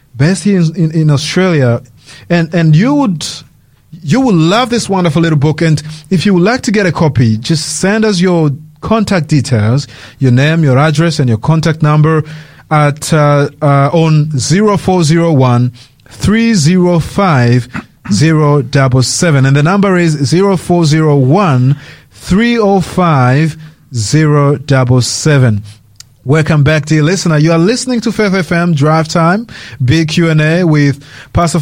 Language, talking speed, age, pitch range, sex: English, 160 wpm, 30-49, 140-175 Hz, male